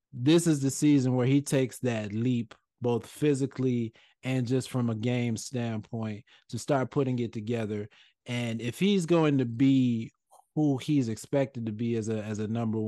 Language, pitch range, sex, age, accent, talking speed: English, 110-130 Hz, male, 30-49, American, 175 wpm